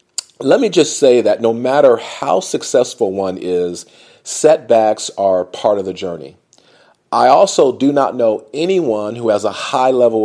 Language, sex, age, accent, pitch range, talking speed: English, male, 40-59, American, 105-160 Hz, 165 wpm